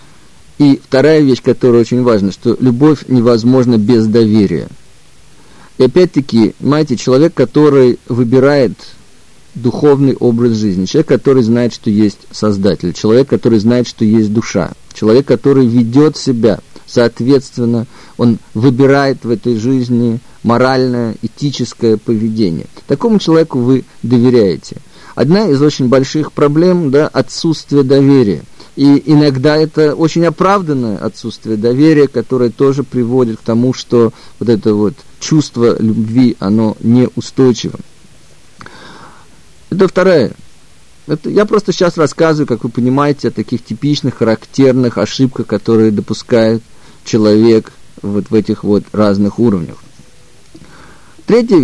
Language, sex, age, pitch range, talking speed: Russian, male, 50-69, 115-140 Hz, 120 wpm